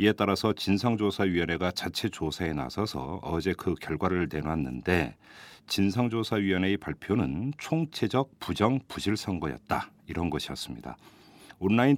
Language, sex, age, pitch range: Korean, male, 40-59, 85-120 Hz